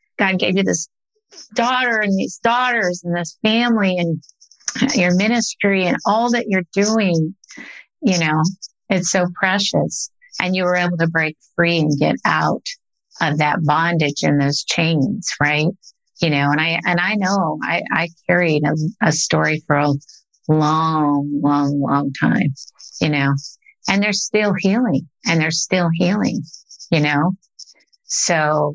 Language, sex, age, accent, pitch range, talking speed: English, female, 50-69, American, 150-195 Hz, 150 wpm